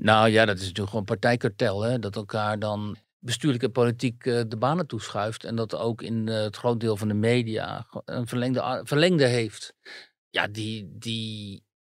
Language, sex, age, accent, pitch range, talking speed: Dutch, male, 50-69, Dutch, 110-135 Hz, 175 wpm